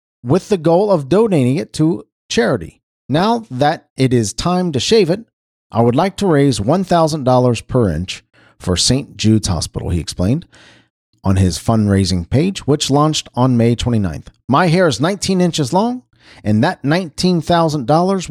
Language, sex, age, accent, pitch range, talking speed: English, male, 40-59, American, 105-165 Hz, 155 wpm